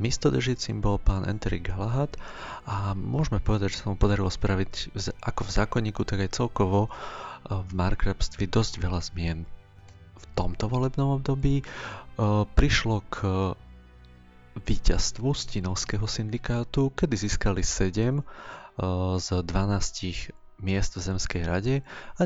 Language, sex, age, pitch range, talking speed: Slovak, male, 30-49, 90-110 Hz, 120 wpm